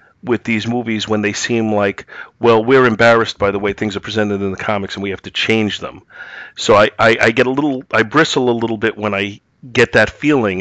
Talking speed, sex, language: 240 wpm, male, English